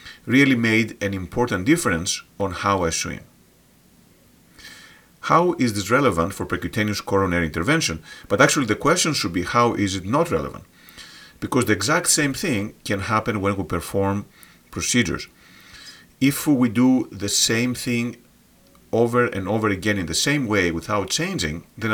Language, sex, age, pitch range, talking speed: English, male, 40-59, 95-120 Hz, 155 wpm